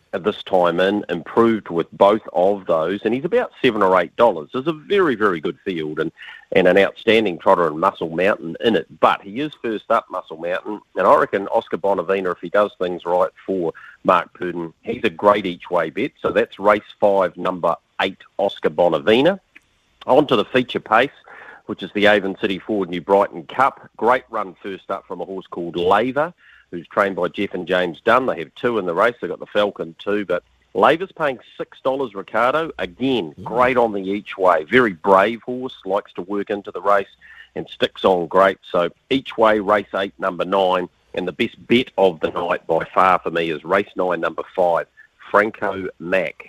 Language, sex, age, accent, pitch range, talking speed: English, male, 40-59, Australian, 90-110 Hz, 200 wpm